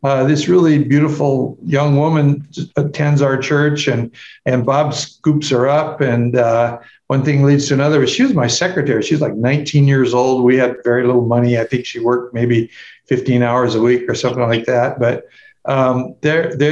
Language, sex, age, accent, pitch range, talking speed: English, male, 60-79, American, 130-155 Hz, 185 wpm